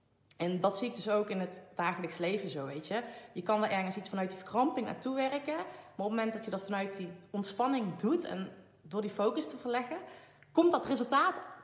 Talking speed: 220 wpm